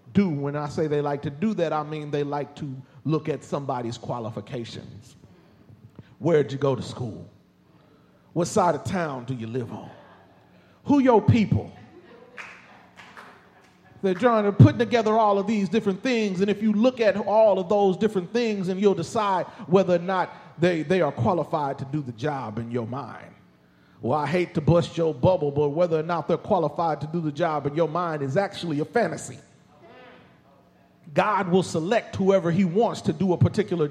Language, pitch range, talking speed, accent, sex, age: English, 145-200 Hz, 185 wpm, American, male, 40-59